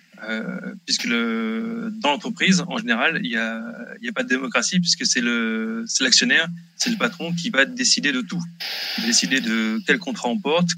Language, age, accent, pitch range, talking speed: French, 20-39, French, 170-235 Hz, 200 wpm